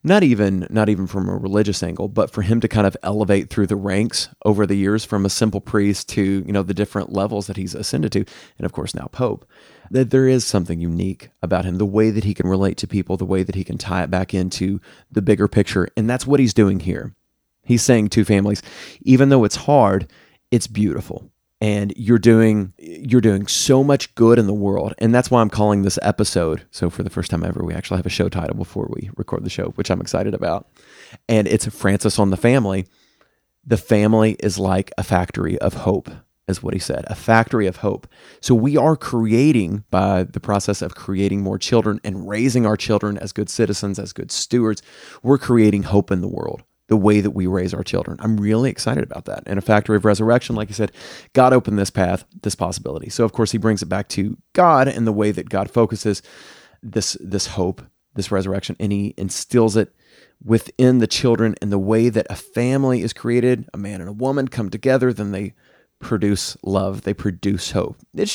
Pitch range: 95-115 Hz